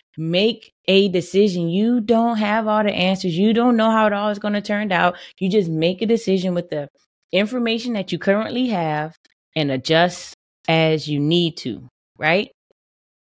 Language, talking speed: English, 175 wpm